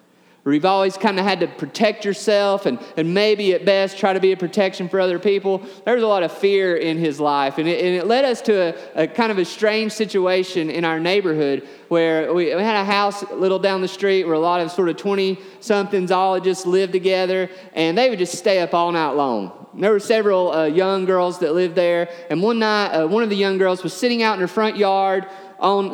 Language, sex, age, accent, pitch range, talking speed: English, male, 30-49, American, 165-200 Hz, 240 wpm